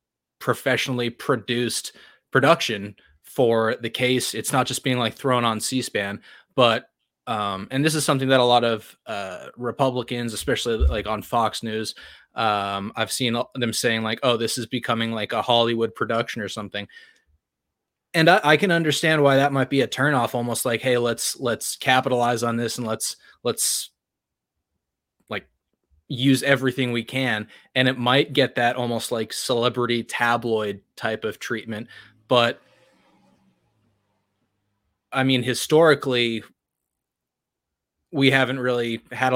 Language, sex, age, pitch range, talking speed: English, male, 20-39, 110-130 Hz, 140 wpm